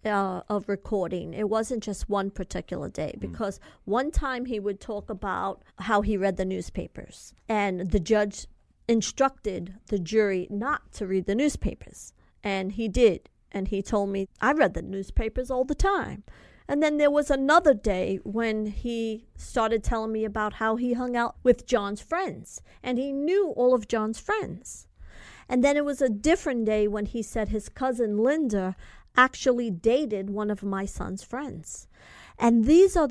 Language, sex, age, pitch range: English, female, 40-59, 205-265 Hz